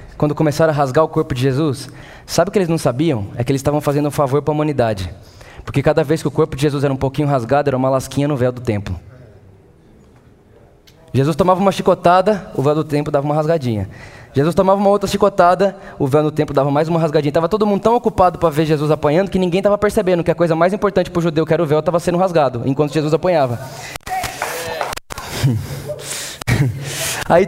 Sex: male